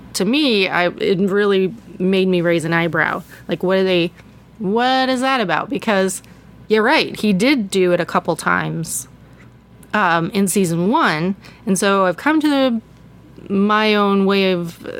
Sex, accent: female, American